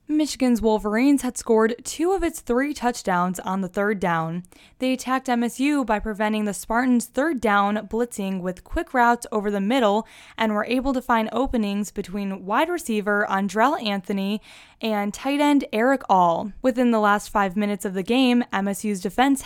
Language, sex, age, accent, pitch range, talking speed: English, female, 10-29, American, 205-255 Hz, 170 wpm